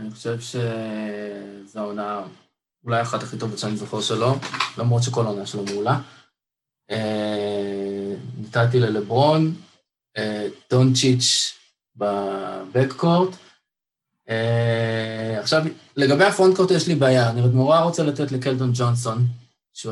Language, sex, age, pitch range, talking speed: Hebrew, male, 20-39, 105-125 Hz, 100 wpm